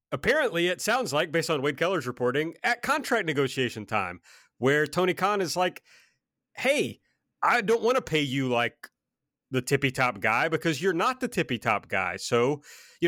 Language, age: English, 30-49